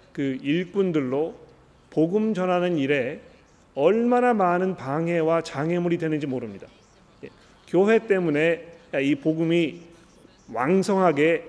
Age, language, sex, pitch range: 40-59, Korean, male, 140-175 Hz